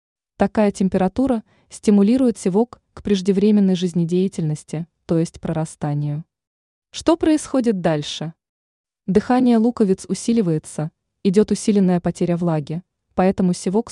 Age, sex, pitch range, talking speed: 20-39, female, 165-220 Hz, 95 wpm